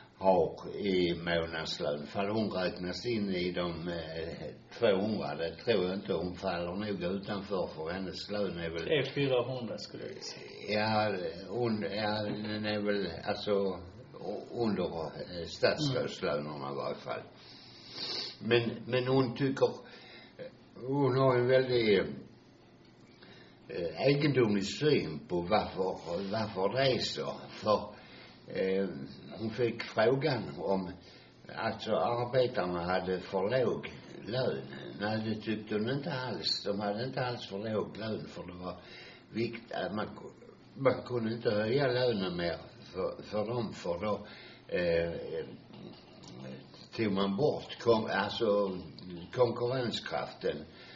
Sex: male